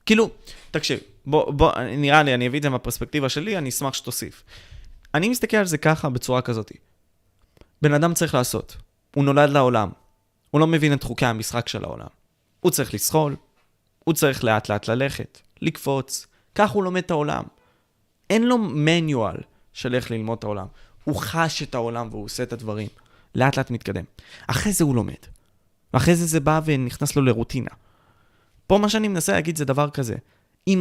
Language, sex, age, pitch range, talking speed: Hebrew, male, 20-39, 110-170 Hz, 175 wpm